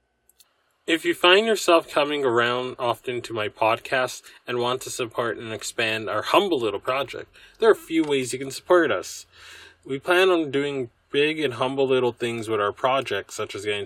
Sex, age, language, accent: male, 20-39, English, American